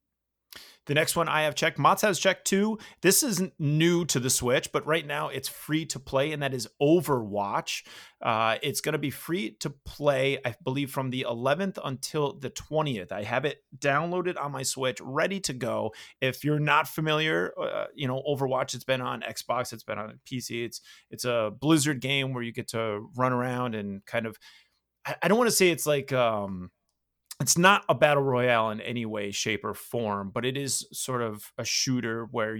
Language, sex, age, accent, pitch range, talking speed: English, male, 30-49, American, 115-150 Hz, 200 wpm